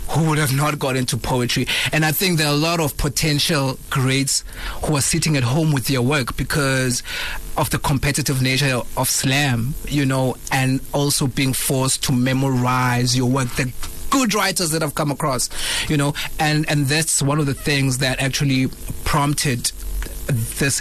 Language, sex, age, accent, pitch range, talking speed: English, male, 30-49, South African, 125-150 Hz, 180 wpm